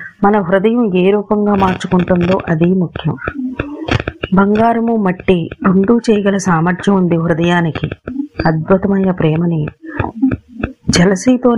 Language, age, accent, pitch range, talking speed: Telugu, 30-49, native, 180-225 Hz, 90 wpm